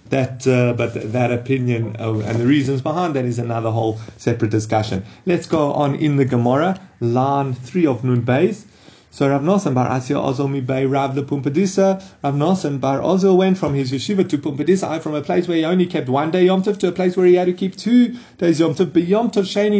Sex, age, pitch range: male, 30-49, 140-195 Hz